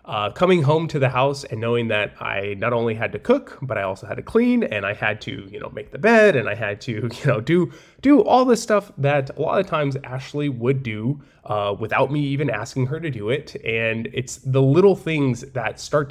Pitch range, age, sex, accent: 110-145 Hz, 20-39, male, American